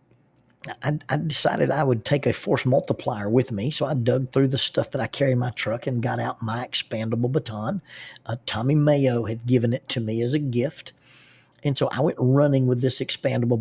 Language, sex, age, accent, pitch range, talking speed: English, male, 50-69, American, 120-135 Hz, 210 wpm